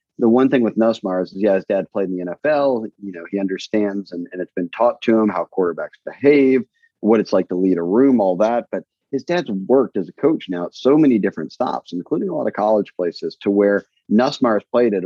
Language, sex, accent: English, male, American